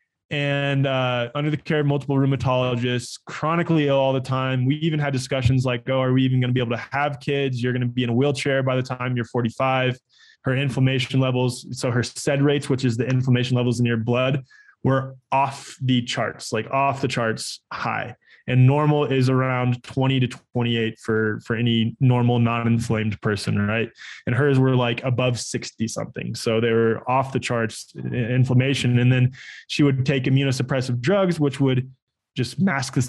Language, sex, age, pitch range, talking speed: English, male, 20-39, 125-145 Hz, 190 wpm